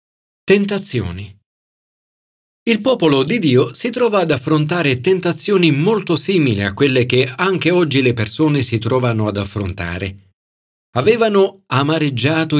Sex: male